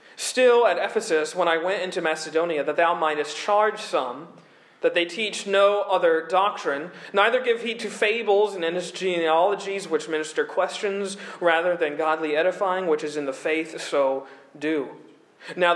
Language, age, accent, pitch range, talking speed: English, 40-59, American, 170-200 Hz, 160 wpm